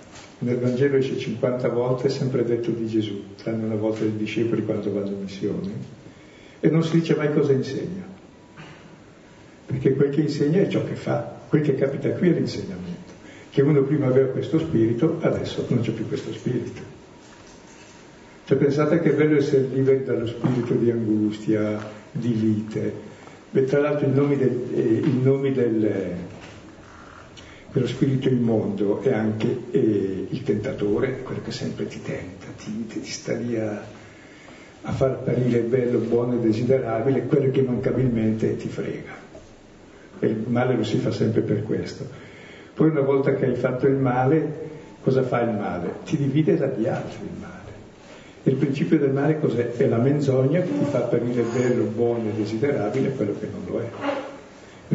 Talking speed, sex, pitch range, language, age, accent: 165 wpm, male, 110-140 Hz, Italian, 60-79, native